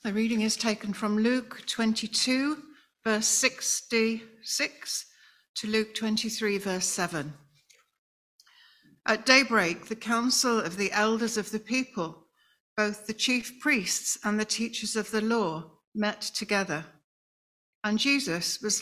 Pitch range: 195-245 Hz